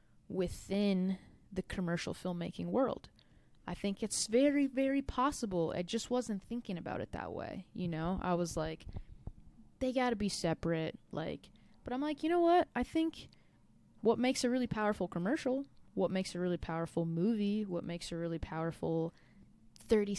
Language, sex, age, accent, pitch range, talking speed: English, female, 20-39, American, 175-225 Hz, 165 wpm